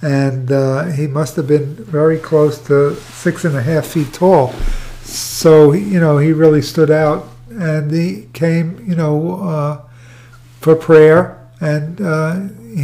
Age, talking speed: 50-69, 150 wpm